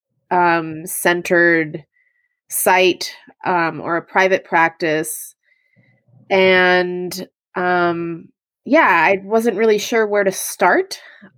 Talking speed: 95 wpm